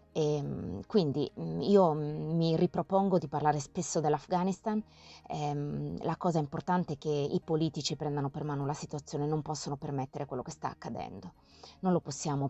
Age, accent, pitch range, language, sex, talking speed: 20-39, native, 150-190 Hz, Italian, female, 150 wpm